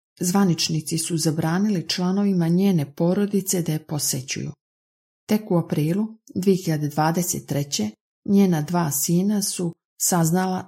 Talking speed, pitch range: 100 wpm, 155-195 Hz